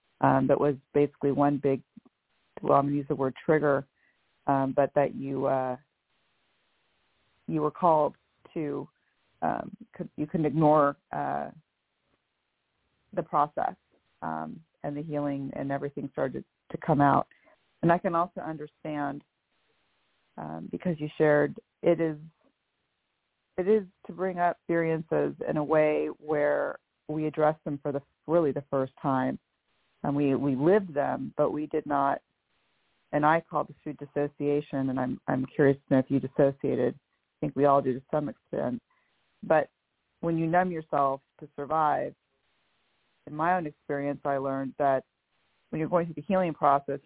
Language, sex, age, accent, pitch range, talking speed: English, female, 30-49, American, 140-160 Hz, 155 wpm